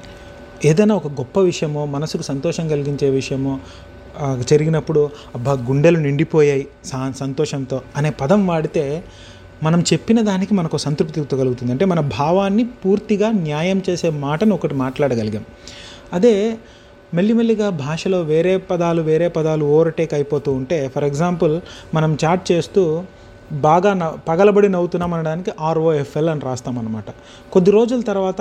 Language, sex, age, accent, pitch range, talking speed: Telugu, male, 30-49, native, 140-190 Hz, 125 wpm